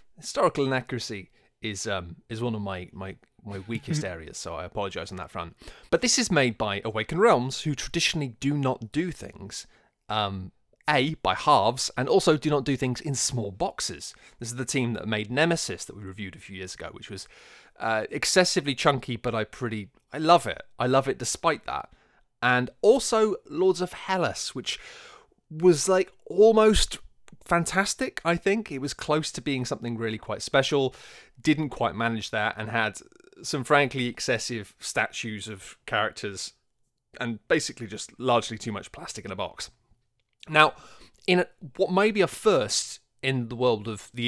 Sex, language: male, English